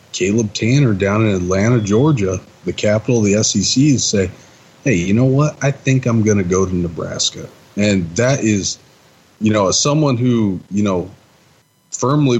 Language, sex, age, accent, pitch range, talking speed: English, male, 30-49, American, 95-115 Hz, 170 wpm